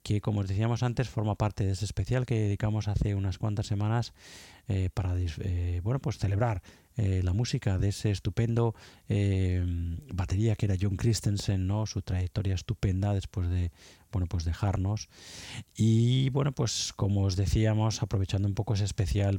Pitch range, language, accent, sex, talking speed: 95-110 Hz, Spanish, Spanish, male, 165 wpm